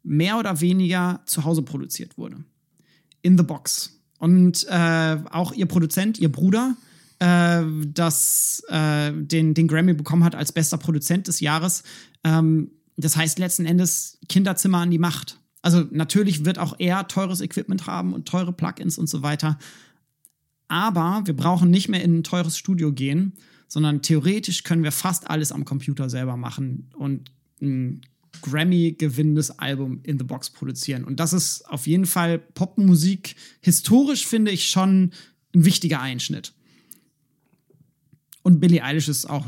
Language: German